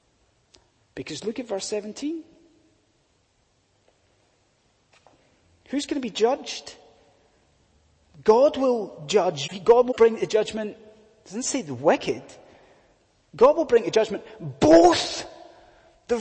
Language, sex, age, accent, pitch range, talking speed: English, male, 30-49, British, 190-290 Hz, 105 wpm